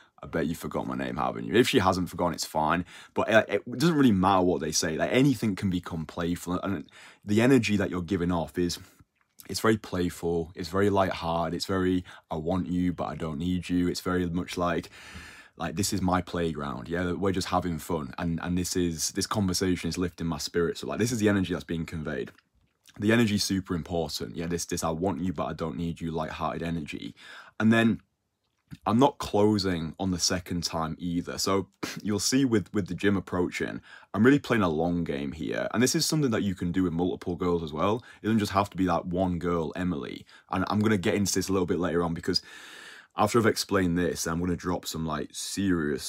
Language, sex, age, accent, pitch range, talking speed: English, male, 20-39, British, 85-100 Hz, 225 wpm